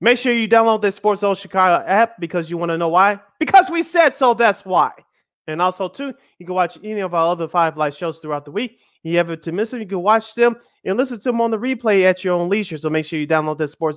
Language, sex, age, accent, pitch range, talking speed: English, male, 30-49, American, 160-215 Hz, 280 wpm